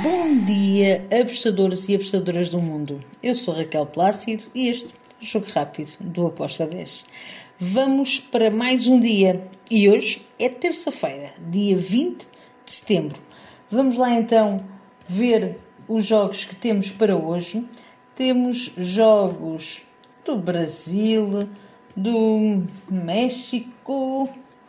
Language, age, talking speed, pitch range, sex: Portuguese, 50-69, 115 wpm, 190-235 Hz, female